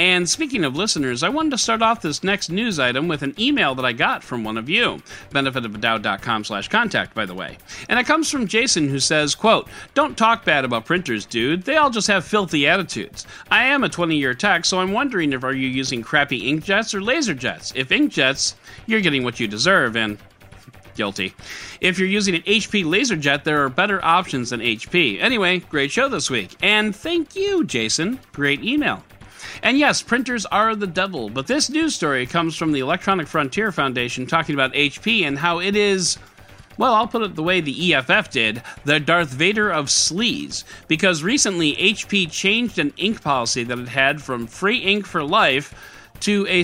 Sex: male